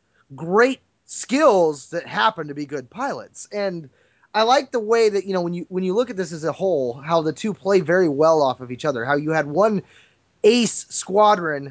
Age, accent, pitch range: 20-39, American, 160-210 Hz